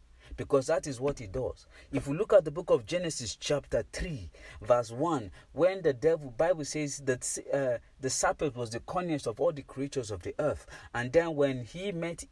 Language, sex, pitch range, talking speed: English, male, 120-170 Hz, 205 wpm